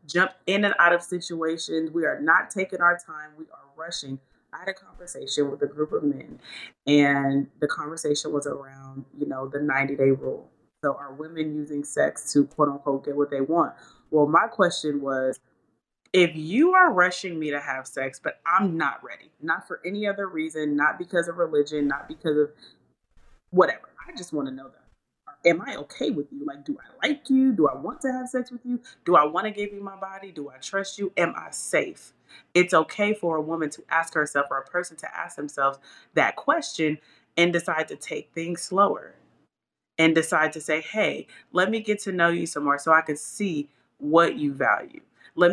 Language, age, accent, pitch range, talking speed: English, 30-49, American, 145-180 Hz, 210 wpm